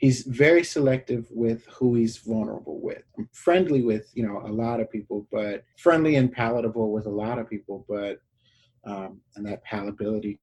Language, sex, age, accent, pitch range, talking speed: English, male, 30-49, American, 105-130 Hz, 180 wpm